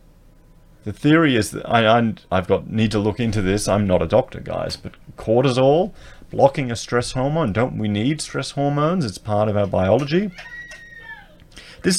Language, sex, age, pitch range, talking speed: English, male, 30-49, 100-125 Hz, 170 wpm